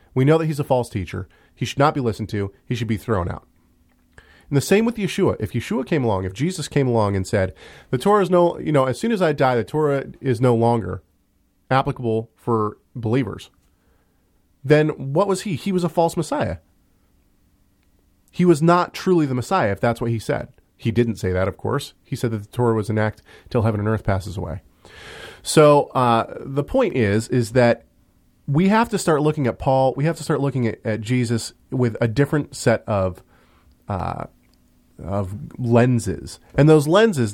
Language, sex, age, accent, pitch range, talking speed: English, male, 30-49, American, 100-145 Hz, 200 wpm